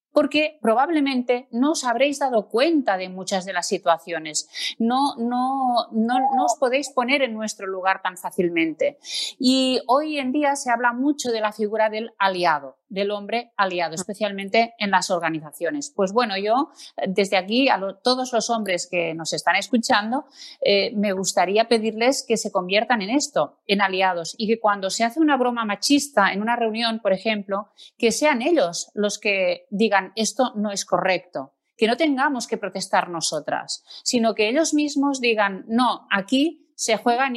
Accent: Spanish